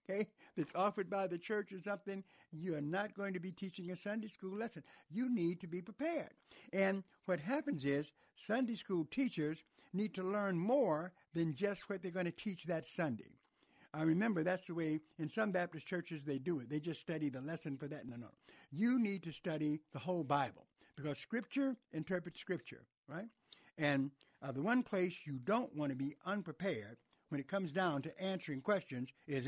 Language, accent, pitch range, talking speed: English, American, 150-200 Hz, 190 wpm